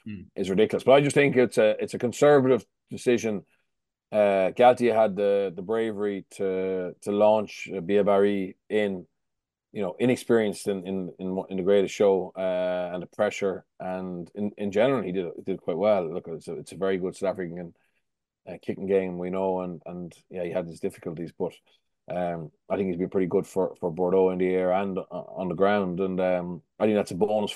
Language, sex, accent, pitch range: English, male, Irish, 90-100 Hz